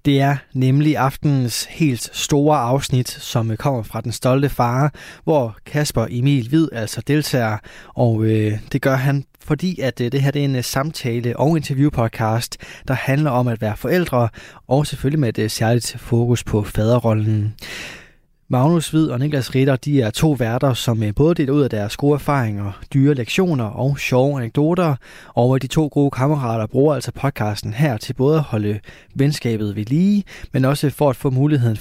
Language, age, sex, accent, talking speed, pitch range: Danish, 20-39, male, native, 170 wpm, 115-145 Hz